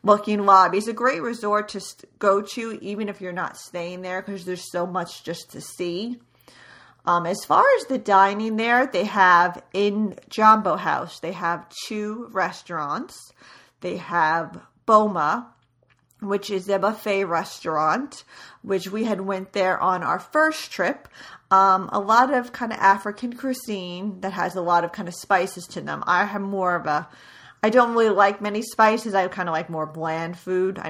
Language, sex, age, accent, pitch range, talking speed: English, female, 40-59, American, 175-215 Hz, 180 wpm